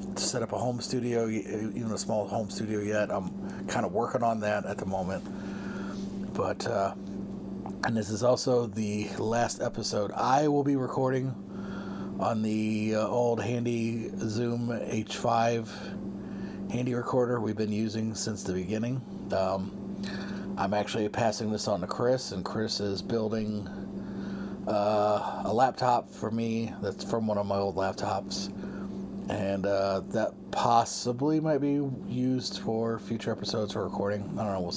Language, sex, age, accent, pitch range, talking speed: English, male, 40-59, American, 100-120 Hz, 150 wpm